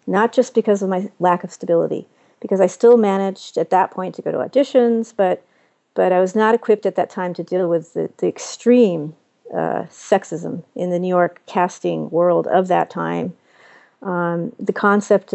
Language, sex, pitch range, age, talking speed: English, female, 175-210 Hz, 40-59, 190 wpm